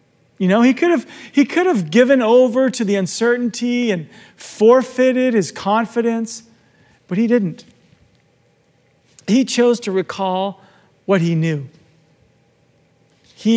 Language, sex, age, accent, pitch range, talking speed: Dutch, male, 40-59, American, 185-235 Hz, 115 wpm